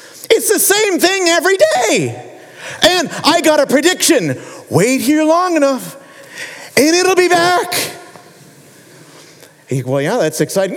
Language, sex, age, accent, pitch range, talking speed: English, male, 40-59, American, 245-330 Hz, 130 wpm